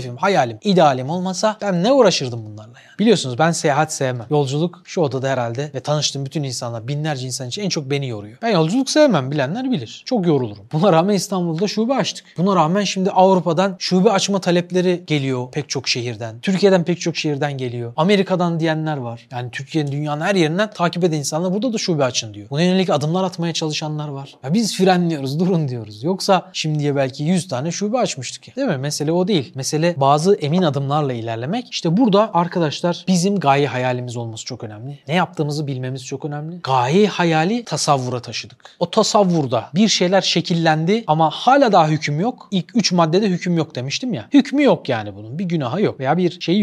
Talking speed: 185 wpm